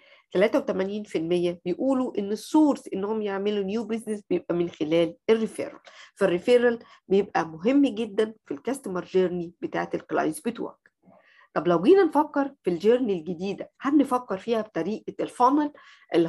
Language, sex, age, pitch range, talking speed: Arabic, female, 50-69, 190-275 Hz, 130 wpm